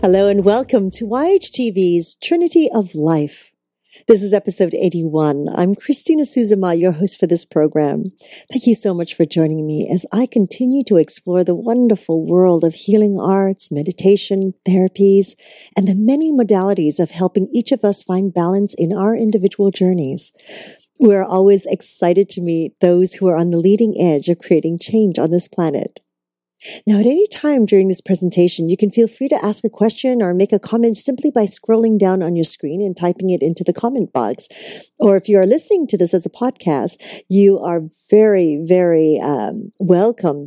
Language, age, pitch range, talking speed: English, 40-59, 170-220 Hz, 180 wpm